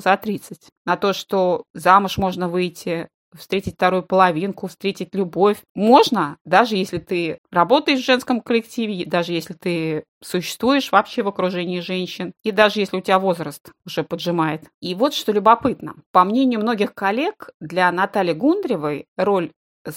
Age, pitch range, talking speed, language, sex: 30-49, 170-235 Hz, 145 wpm, Russian, female